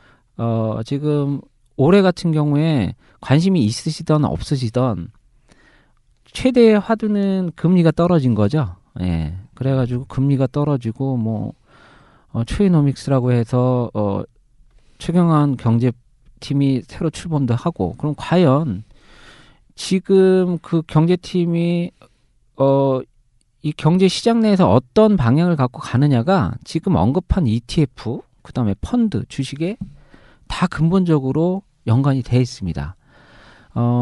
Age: 40-59